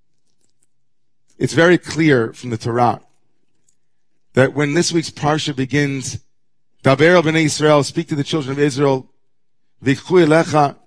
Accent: American